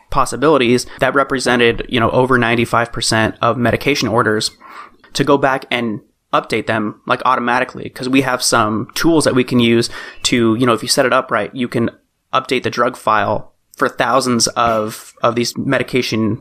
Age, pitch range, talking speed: 30-49, 115-135 Hz, 175 wpm